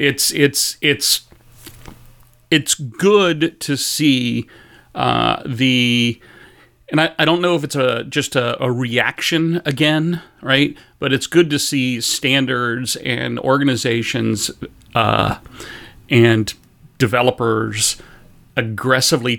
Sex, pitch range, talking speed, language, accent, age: male, 120-150 Hz, 110 wpm, English, American, 40-59